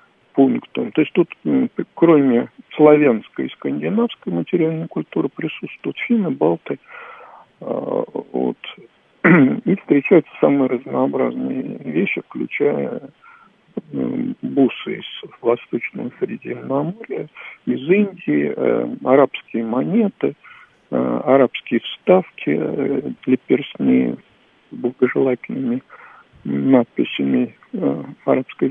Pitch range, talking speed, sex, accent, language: 155-255 Hz, 75 wpm, male, native, Russian